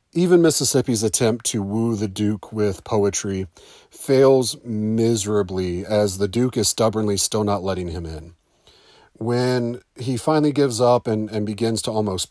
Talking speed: 150 wpm